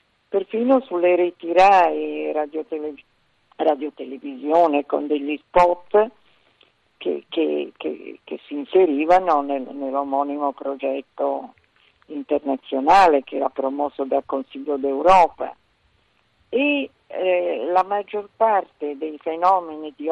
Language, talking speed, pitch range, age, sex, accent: Italian, 100 wpm, 140-215 Hz, 50-69, female, native